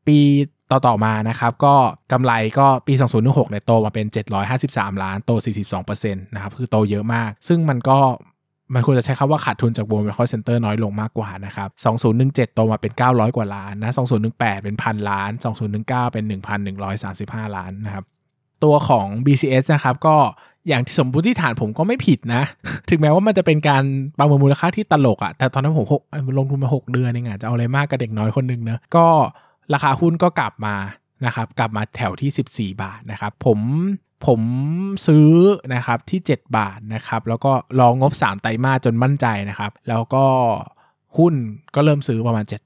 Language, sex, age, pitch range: Thai, male, 20-39, 110-135 Hz